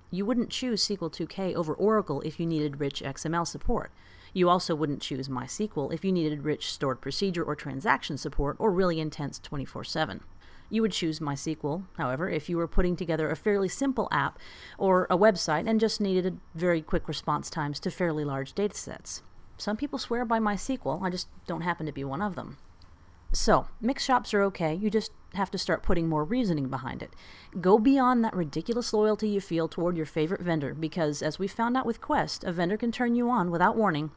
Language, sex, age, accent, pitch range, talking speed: English, female, 30-49, American, 150-210 Hz, 200 wpm